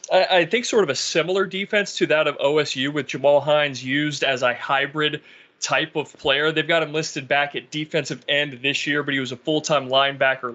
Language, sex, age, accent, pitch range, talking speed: English, male, 30-49, American, 130-150 Hz, 210 wpm